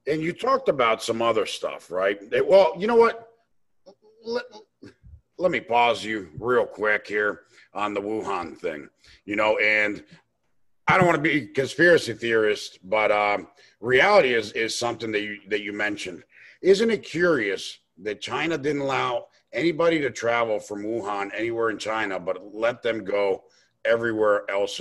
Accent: American